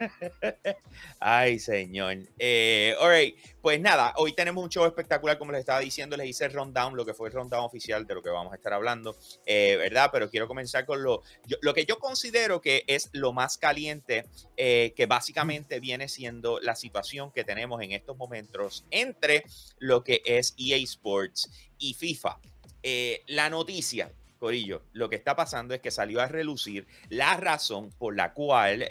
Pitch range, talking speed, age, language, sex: 120-175 Hz, 180 wpm, 30-49, Spanish, male